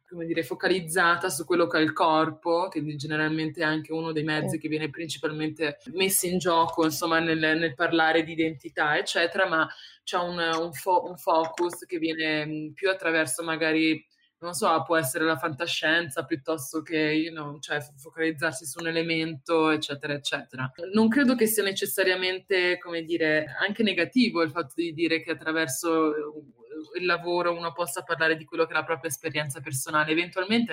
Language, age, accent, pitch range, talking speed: Italian, 20-39, native, 150-175 Hz, 170 wpm